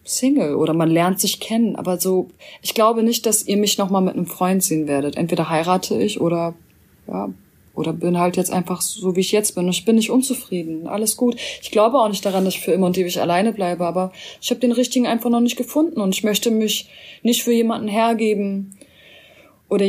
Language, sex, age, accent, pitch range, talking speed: German, female, 20-39, German, 190-240 Hz, 220 wpm